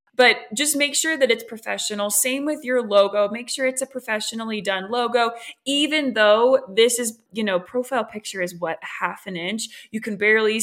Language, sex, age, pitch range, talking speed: English, female, 20-39, 210-260 Hz, 190 wpm